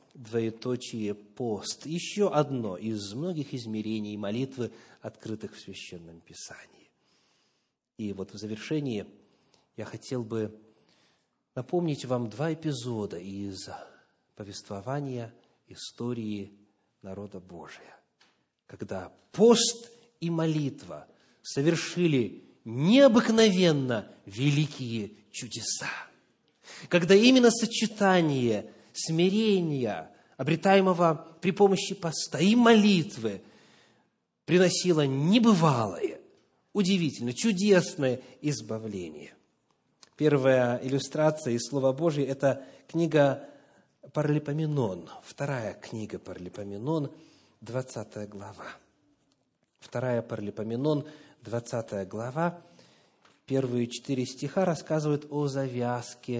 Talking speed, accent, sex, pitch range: 80 wpm, native, male, 110-165 Hz